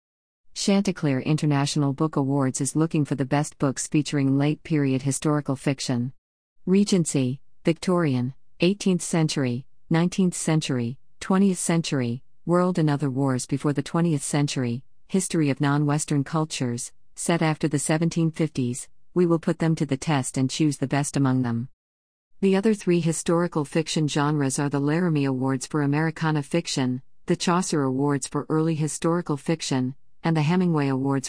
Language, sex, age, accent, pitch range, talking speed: English, female, 50-69, American, 135-165 Hz, 150 wpm